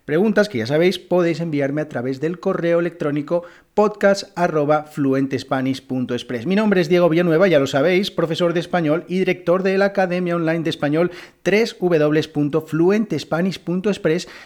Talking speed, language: 135 wpm, Spanish